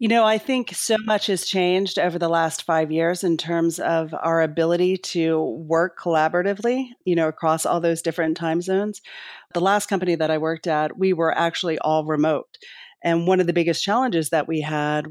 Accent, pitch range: American, 160-185 Hz